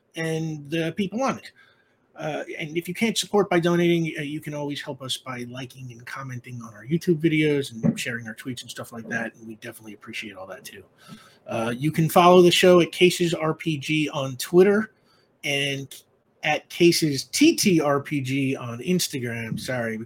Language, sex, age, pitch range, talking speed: English, male, 30-49, 125-180 Hz, 175 wpm